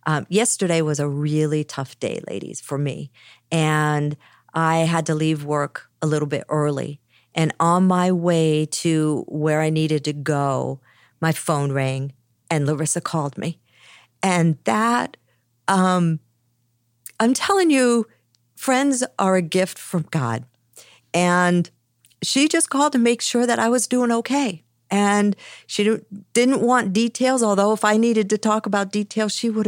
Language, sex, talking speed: English, female, 150 wpm